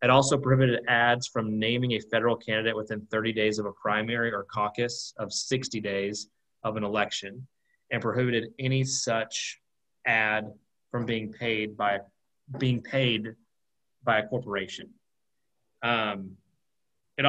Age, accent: 30-49, American